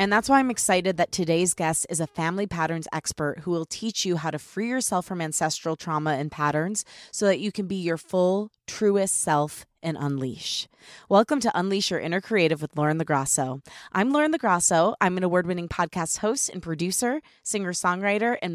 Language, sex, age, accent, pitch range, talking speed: English, female, 20-39, American, 160-205 Hz, 190 wpm